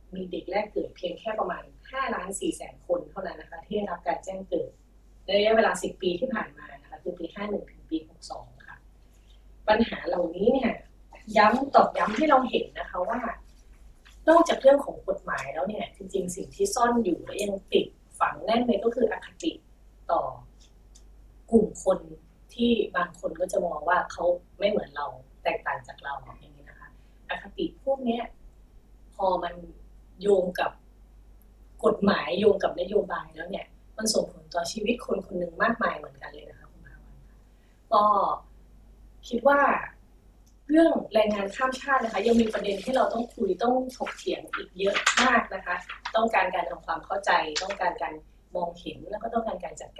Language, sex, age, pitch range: Thai, female, 30-49, 185-255 Hz